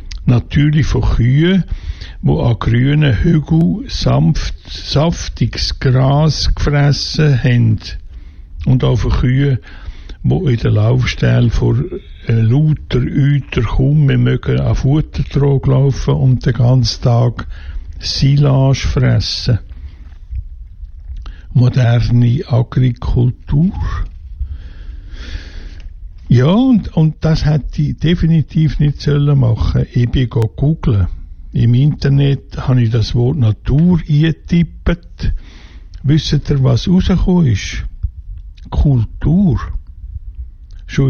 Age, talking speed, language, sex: 60-79, 95 wpm, English, male